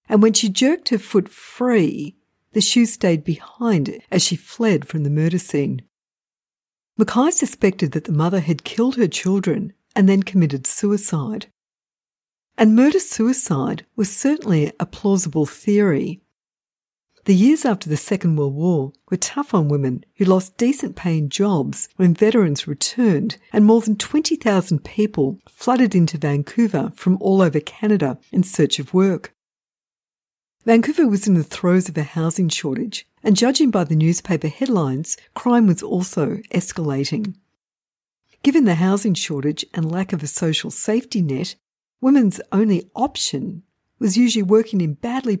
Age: 50-69